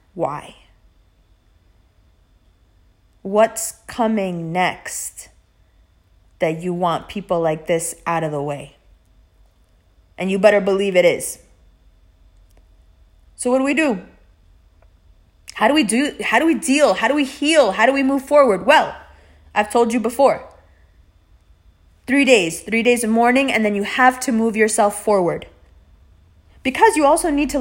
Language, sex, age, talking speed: English, female, 20-39, 145 wpm